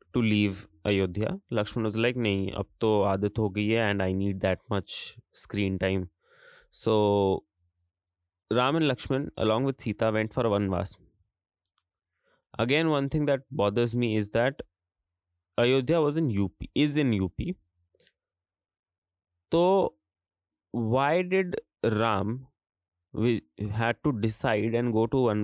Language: Hindi